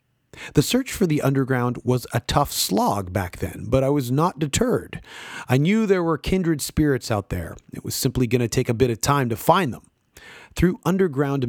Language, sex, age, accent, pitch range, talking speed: English, male, 30-49, American, 115-145 Hz, 205 wpm